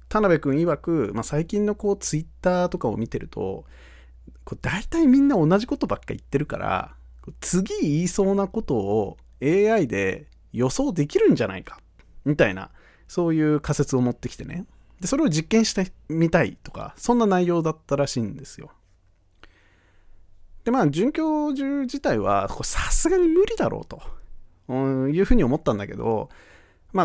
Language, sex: Japanese, male